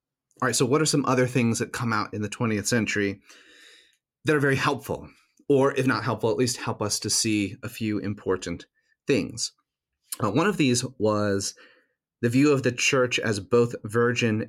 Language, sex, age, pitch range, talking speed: English, male, 30-49, 105-130 Hz, 190 wpm